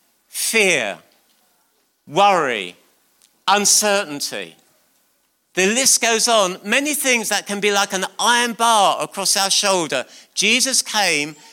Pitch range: 165-235 Hz